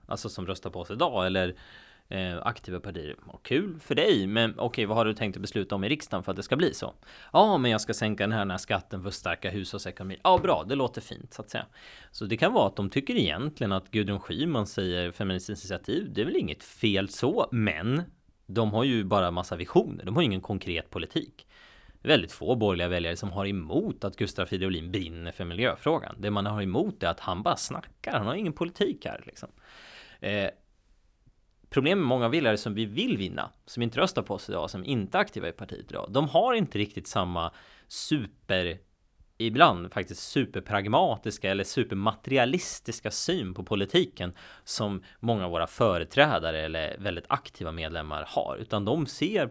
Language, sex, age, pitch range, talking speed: Swedish, male, 30-49, 90-115 Hz, 200 wpm